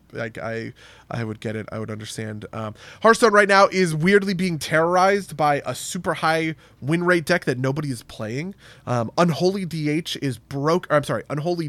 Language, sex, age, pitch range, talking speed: English, male, 30-49, 120-160 Hz, 185 wpm